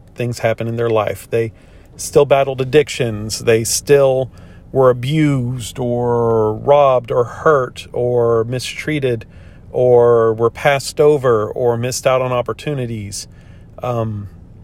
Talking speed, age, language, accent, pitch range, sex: 120 wpm, 40-59, English, American, 95-130 Hz, male